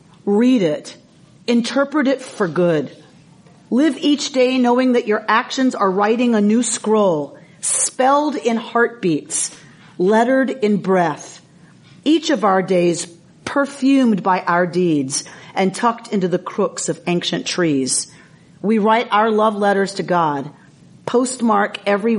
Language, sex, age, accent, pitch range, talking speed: English, female, 40-59, American, 170-240 Hz, 135 wpm